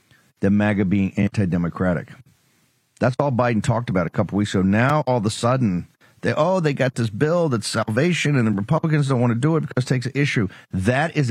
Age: 50-69